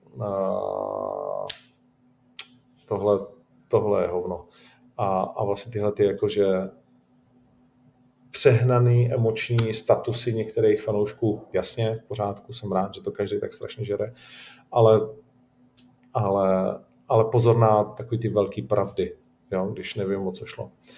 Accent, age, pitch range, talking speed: native, 40-59, 110-125 Hz, 110 wpm